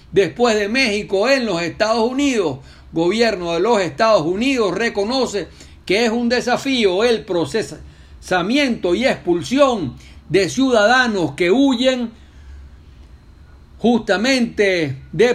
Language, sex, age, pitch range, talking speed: Spanish, male, 60-79, 165-240 Hz, 105 wpm